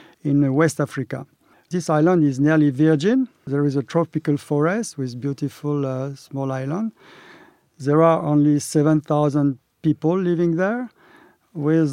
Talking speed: 130 wpm